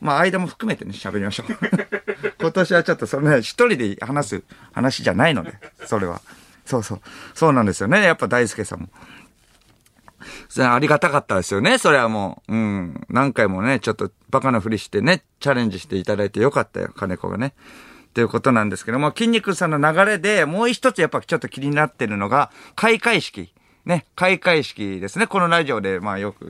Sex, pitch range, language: male, 115-190 Hz, Japanese